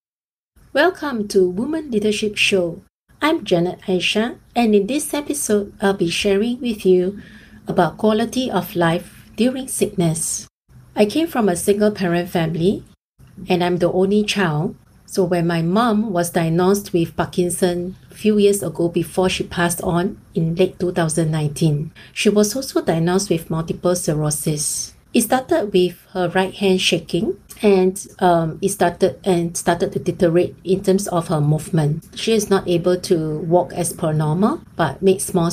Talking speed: 155 wpm